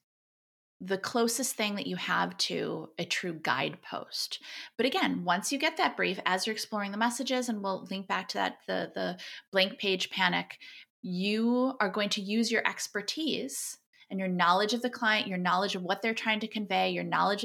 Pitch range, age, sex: 190-240 Hz, 30-49, female